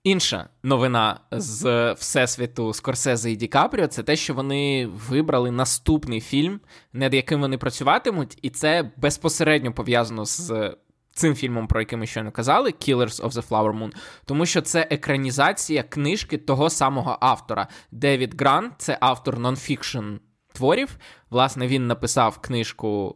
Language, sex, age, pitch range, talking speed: Ukrainian, male, 20-39, 120-150 Hz, 145 wpm